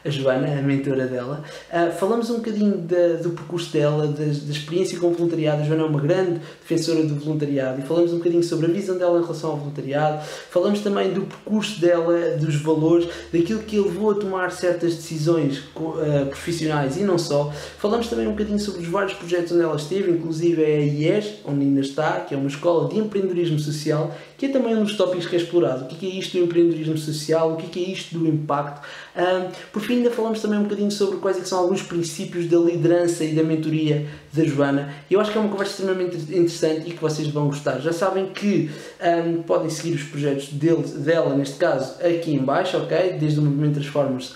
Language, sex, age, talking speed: English, male, 20-39, 200 wpm